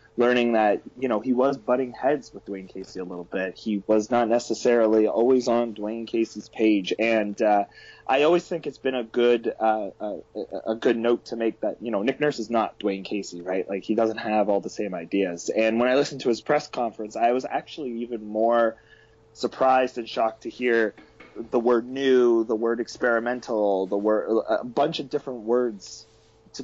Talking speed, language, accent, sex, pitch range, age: 200 wpm, English, American, male, 110-130 Hz, 20-39